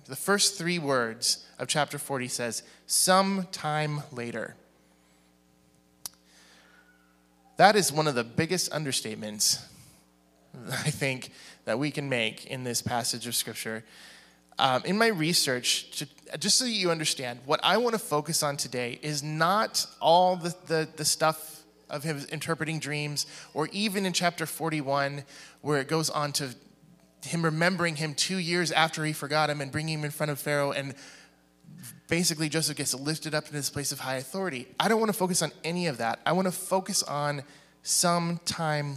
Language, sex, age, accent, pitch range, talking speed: English, male, 20-39, American, 125-175 Hz, 170 wpm